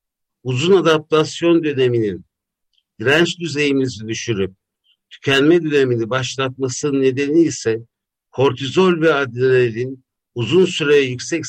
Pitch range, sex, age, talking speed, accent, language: 120-150 Hz, male, 60-79, 90 wpm, native, Turkish